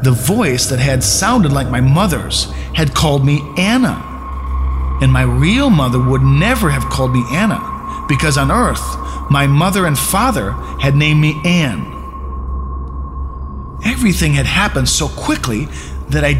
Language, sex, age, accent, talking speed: English, male, 40-59, American, 145 wpm